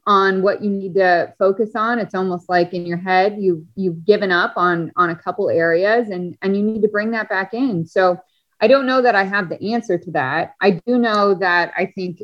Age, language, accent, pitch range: 20-39, English, American, 170-200 Hz